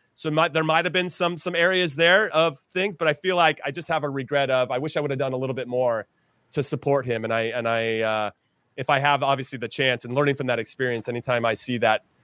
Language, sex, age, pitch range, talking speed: English, male, 30-49, 130-170 Hz, 270 wpm